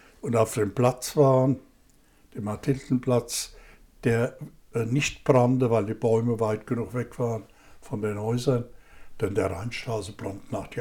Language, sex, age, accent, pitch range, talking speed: German, male, 60-79, German, 115-135 Hz, 145 wpm